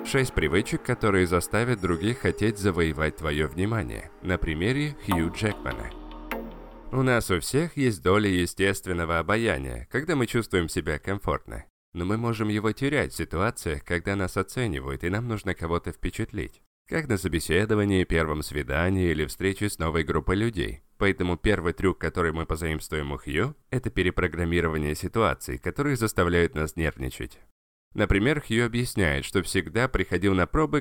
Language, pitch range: Russian, 85-110 Hz